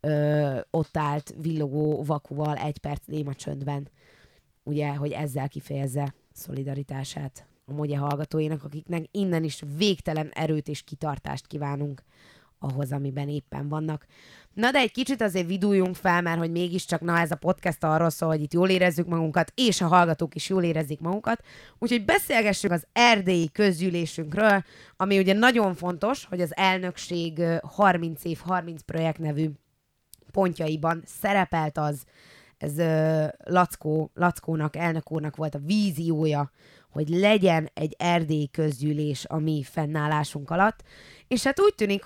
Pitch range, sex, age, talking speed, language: 150-180 Hz, female, 20-39, 140 wpm, Hungarian